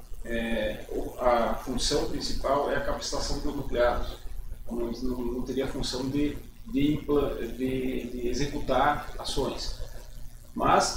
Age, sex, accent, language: 40-59, male, Brazilian, Portuguese